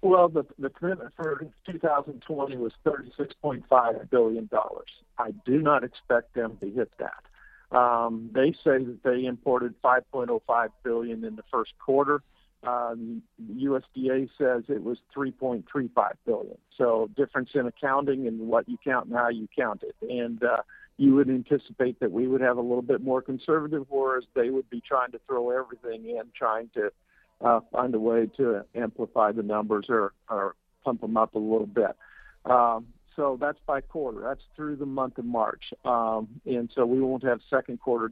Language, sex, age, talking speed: English, male, 50-69, 170 wpm